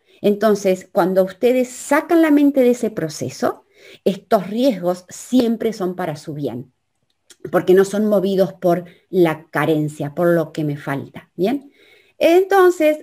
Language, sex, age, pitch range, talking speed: Spanish, female, 30-49, 175-245 Hz, 140 wpm